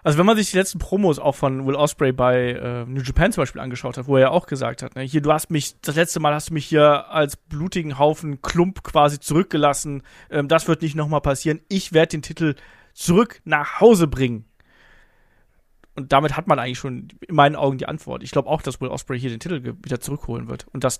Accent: German